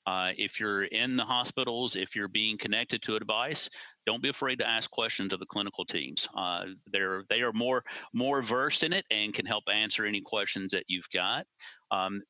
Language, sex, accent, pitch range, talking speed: English, male, American, 95-110 Hz, 205 wpm